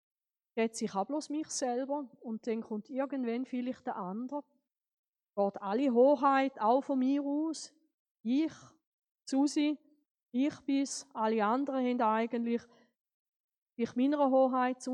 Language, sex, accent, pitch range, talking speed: German, female, Swiss, 220-280 Hz, 120 wpm